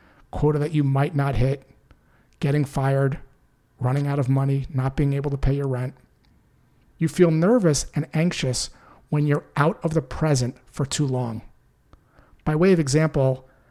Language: English